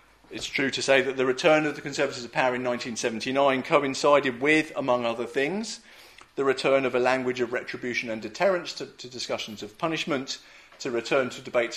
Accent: British